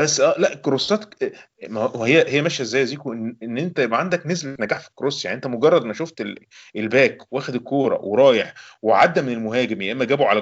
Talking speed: 200 wpm